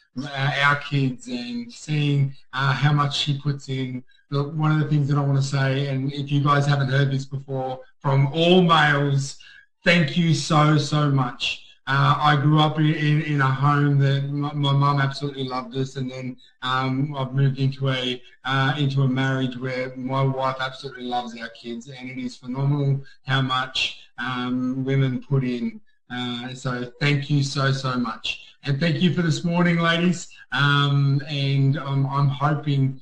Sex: male